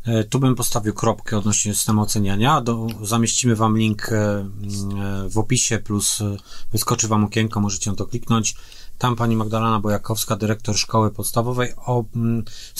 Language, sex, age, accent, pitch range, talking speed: Polish, male, 30-49, native, 105-120 Hz, 140 wpm